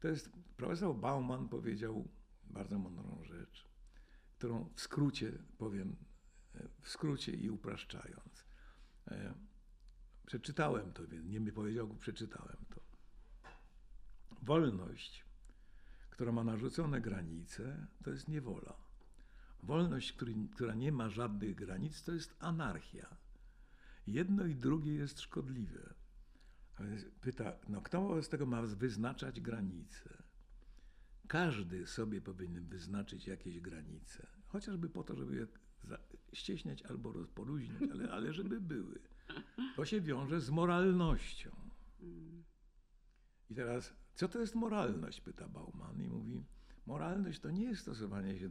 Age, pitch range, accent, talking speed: 60-79, 100-165 Hz, native, 115 wpm